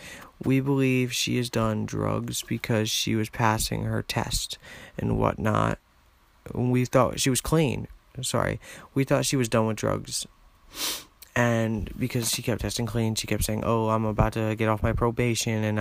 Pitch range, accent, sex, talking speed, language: 105-115 Hz, American, male, 170 wpm, English